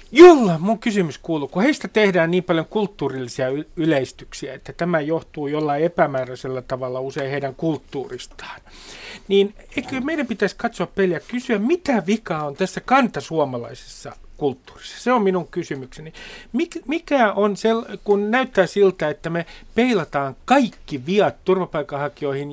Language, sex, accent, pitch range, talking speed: Finnish, male, native, 155-210 Hz, 135 wpm